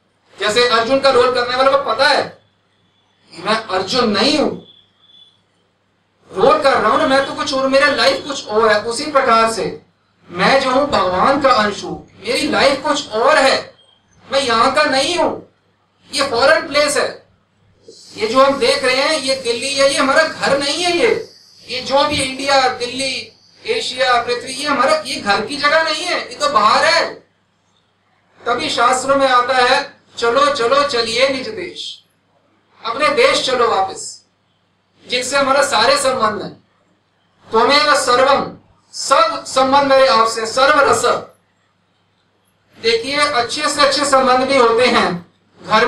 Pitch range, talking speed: 225-285 Hz, 140 wpm